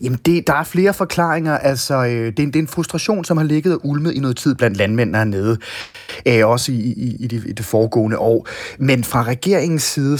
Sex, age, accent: male, 30-49, native